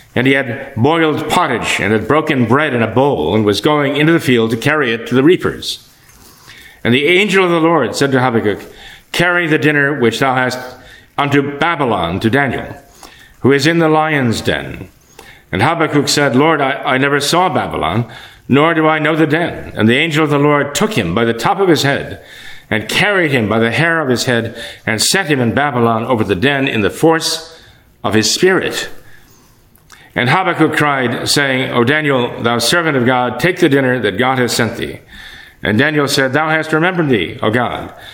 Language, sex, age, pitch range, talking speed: English, male, 60-79, 120-160 Hz, 200 wpm